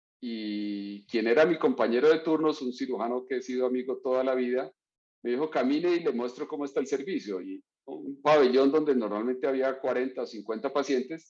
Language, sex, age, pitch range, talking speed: English, male, 40-59, 115-140 Hz, 190 wpm